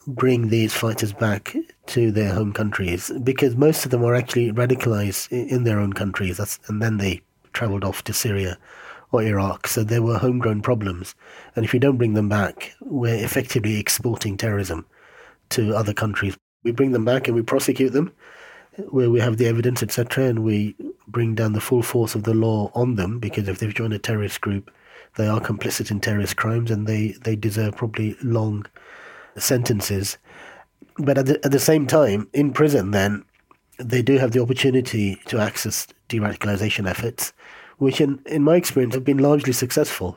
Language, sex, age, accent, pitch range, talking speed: English, male, 40-59, British, 105-130 Hz, 180 wpm